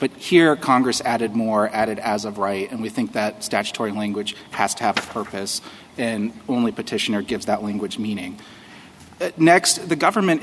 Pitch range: 115-140 Hz